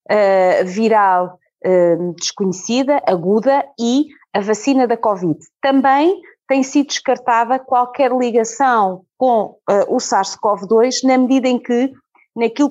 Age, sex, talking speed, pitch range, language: 30-49, female, 120 wpm, 210-255 Hz, Portuguese